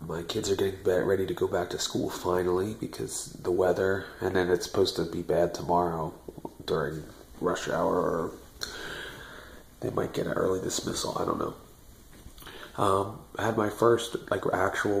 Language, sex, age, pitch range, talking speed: English, male, 30-49, 90-105 Hz, 170 wpm